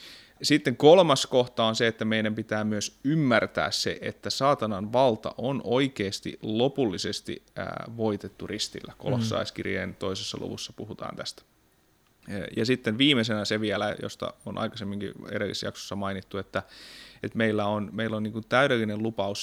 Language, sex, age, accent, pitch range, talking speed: Finnish, male, 30-49, native, 100-120 Hz, 135 wpm